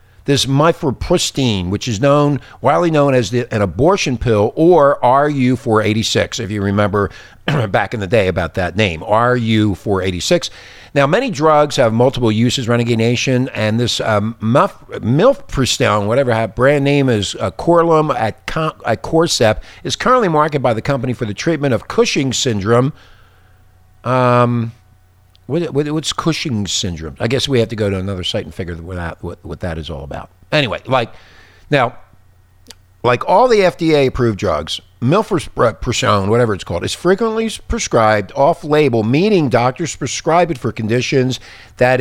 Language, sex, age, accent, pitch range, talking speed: English, male, 50-69, American, 100-145 Hz, 150 wpm